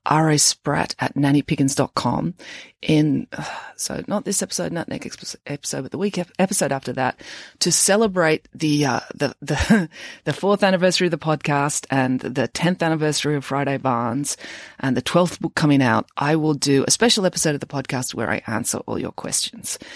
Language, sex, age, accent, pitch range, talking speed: English, female, 30-49, Australian, 130-175 Hz, 175 wpm